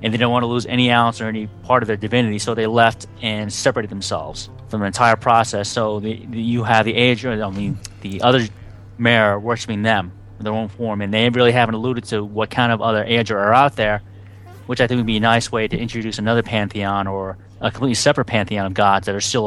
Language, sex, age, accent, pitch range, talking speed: English, male, 30-49, American, 100-120 Hz, 235 wpm